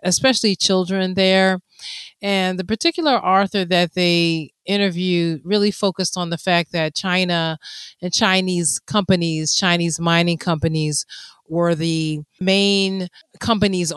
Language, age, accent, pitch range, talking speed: English, 30-49, American, 170-195 Hz, 115 wpm